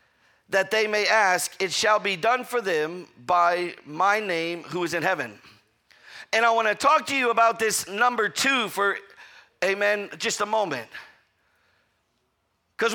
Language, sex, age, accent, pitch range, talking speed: English, male, 50-69, American, 210-265 Hz, 160 wpm